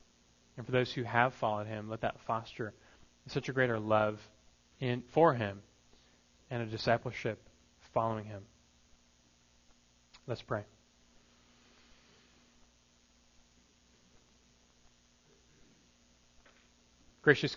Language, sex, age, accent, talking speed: English, male, 30-49, American, 85 wpm